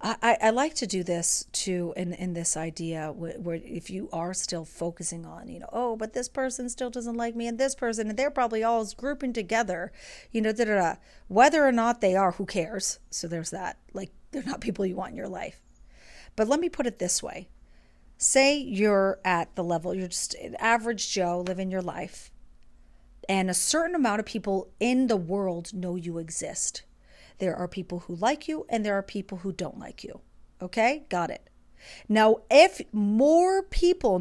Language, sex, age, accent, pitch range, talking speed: English, female, 40-59, American, 165-235 Hz, 195 wpm